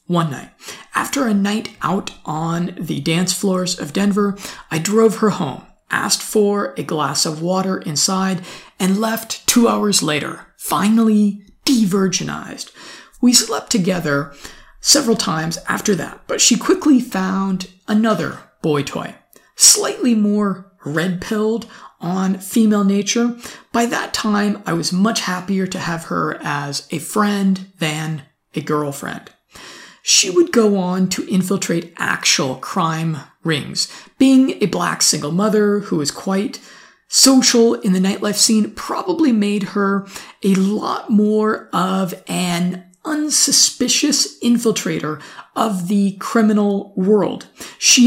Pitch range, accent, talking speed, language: 180-225 Hz, American, 130 wpm, English